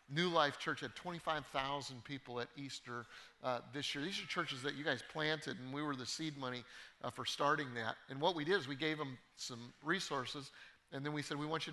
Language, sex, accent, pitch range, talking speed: English, male, American, 130-155 Hz, 230 wpm